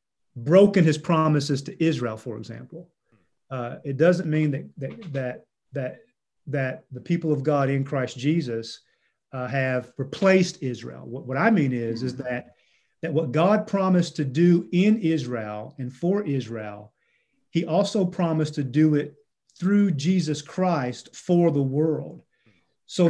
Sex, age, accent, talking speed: male, 40-59, American, 150 wpm